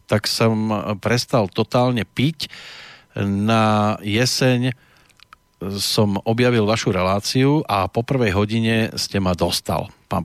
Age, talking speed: 40-59, 110 wpm